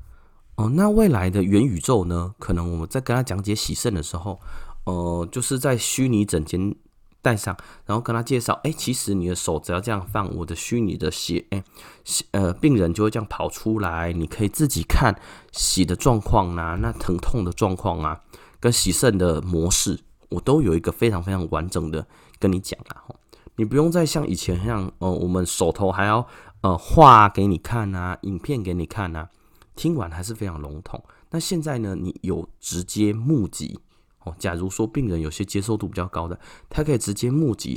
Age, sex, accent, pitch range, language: 20-39, male, native, 85-115 Hz, Chinese